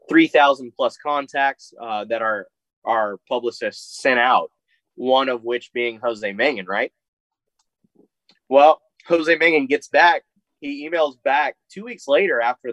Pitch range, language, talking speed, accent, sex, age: 115-150 Hz, English, 135 wpm, American, male, 20-39